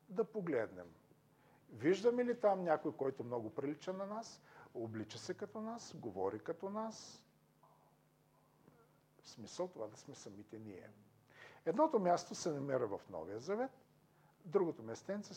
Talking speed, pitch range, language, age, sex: 135 wpm, 130-180 Hz, Bulgarian, 50-69, male